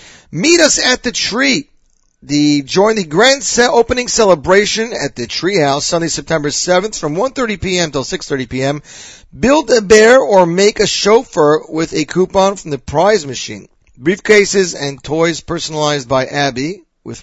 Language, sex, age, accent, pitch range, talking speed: English, male, 40-59, American, 150-205 Hz, 155 wpm